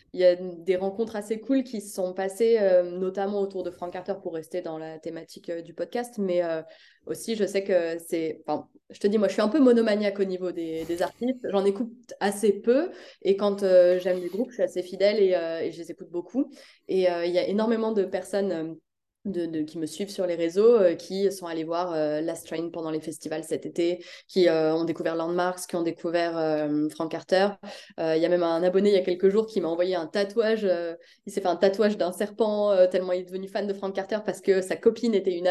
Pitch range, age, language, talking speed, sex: 170-210 Hz, 20-39, French, 250 wpm, female